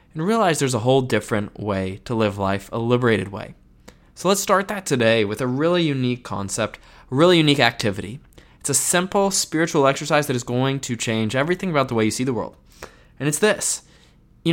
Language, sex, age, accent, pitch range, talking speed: English, male, 20-39, American, 115-170 Hz, 200 wpm